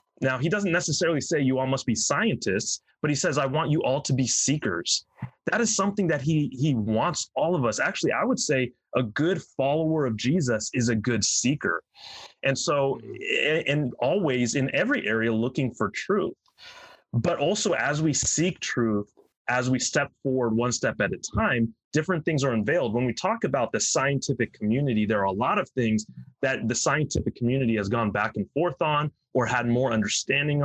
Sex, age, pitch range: male, 30-49, 120-150 Hz